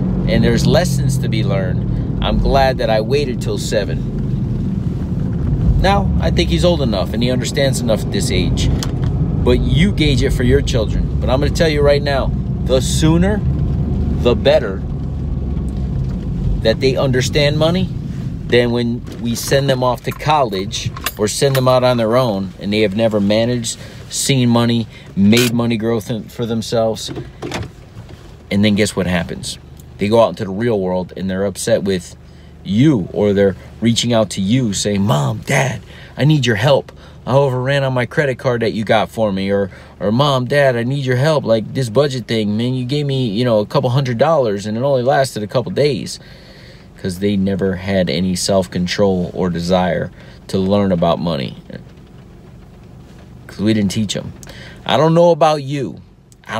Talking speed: 180 wpm